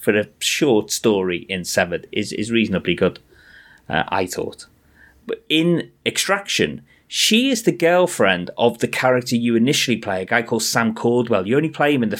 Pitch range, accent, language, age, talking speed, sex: 90-125 Hz, British, English, 30-49, 180 wpm, male